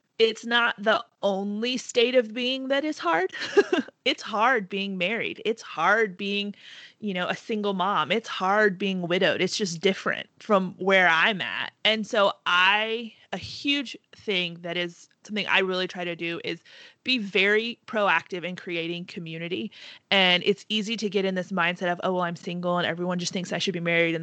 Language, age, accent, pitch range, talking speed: English, 30-49, American, 175-220 Hz, 190 wpm